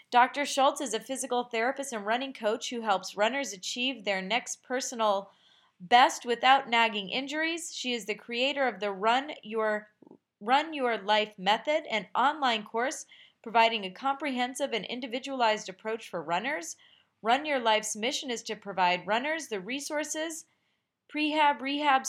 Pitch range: 210-270 Hz